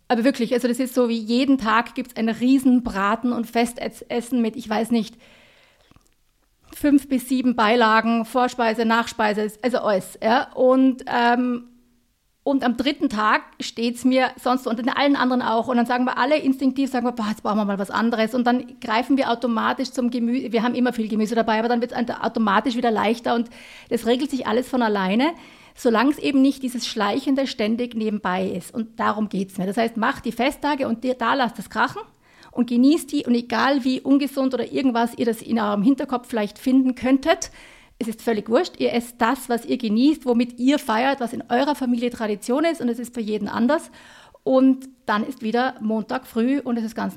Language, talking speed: German, 205 wpm